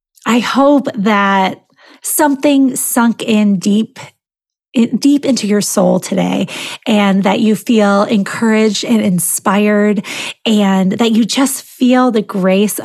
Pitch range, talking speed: 195-250 Hz, 120 wpm